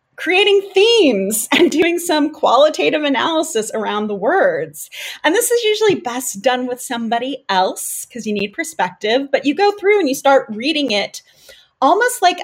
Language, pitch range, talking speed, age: English, 195-265 Hz, 165 wpm, 30-49